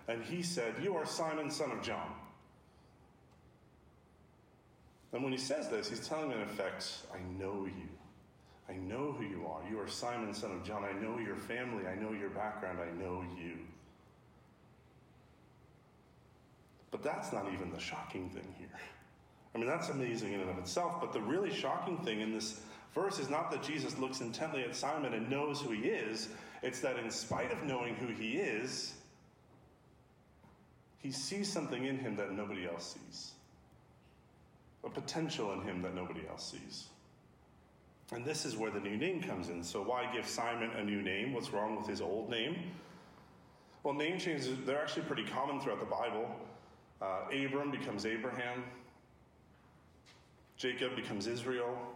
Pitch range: 95-135 Hz